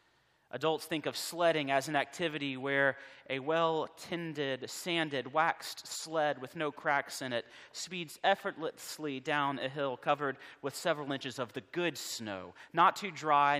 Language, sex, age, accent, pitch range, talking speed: English, male, 30-49, American, 130-175 Hz, 150 wpm